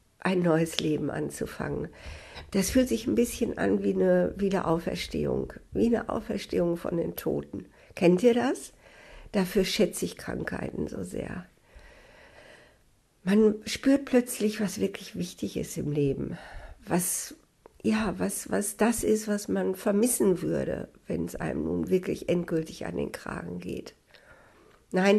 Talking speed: 140 wpm